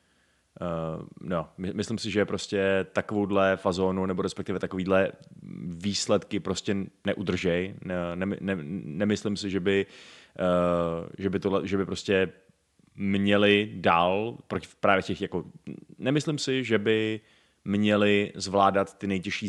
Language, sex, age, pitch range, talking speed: Czech, male, 30-49, 95-115 Hz, 110 wpm